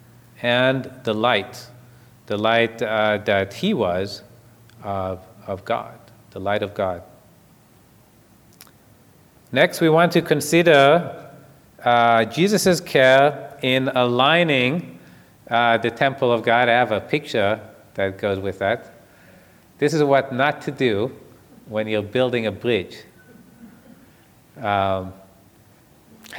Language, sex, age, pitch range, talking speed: English, male, 40-59, 115-140 Hz, 115 wpm